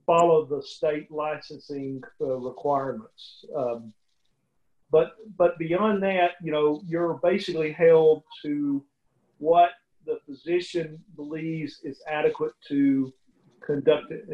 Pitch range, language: 140-170 Hz, English